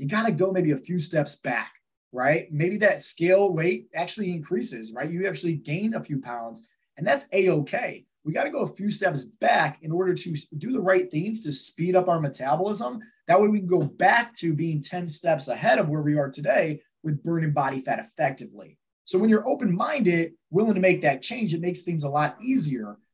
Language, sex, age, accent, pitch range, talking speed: English, male, 20-39, American, 145-195 Hz, 215 wpm